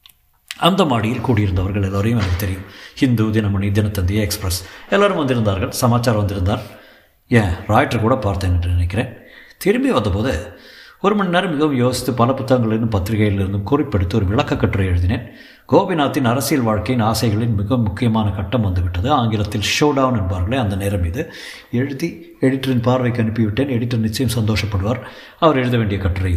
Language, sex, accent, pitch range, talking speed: Tamil, male, native, 105-135 Hz, 135 wpm